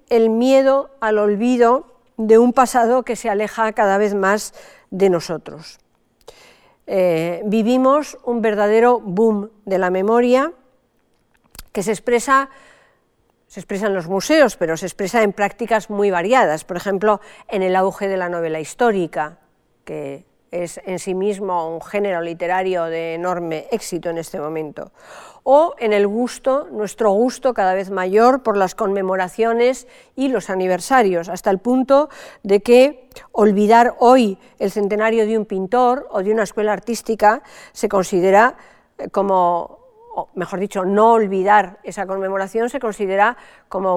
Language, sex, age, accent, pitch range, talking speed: Spanish, female, 50-69, Spanish, 185-240 Hz, 145 wpm